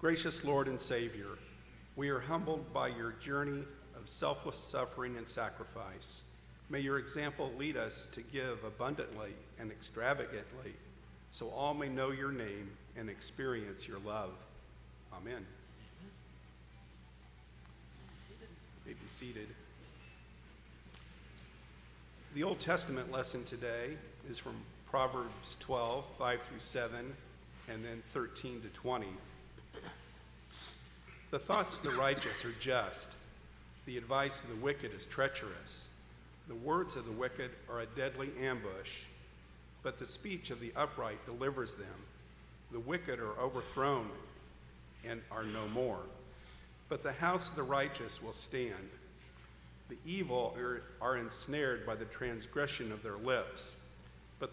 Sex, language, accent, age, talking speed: male, English, American, 50-69, 125 wpm